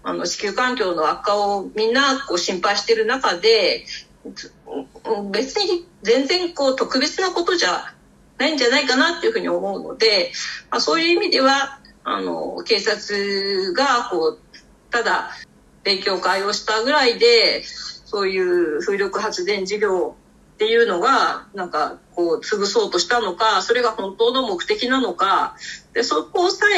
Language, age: Japanese, 40-59